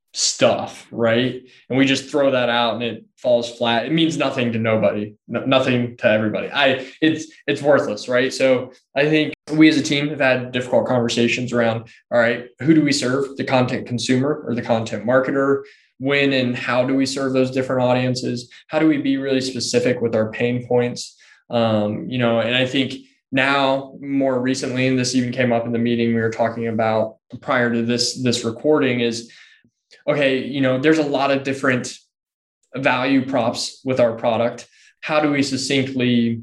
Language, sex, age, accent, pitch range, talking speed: English, male, 20-39, American, 120-135 Hz, 190 wpm